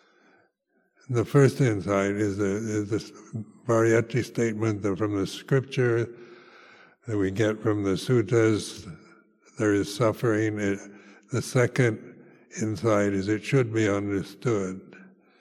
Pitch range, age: 105-125 Hz, 60-79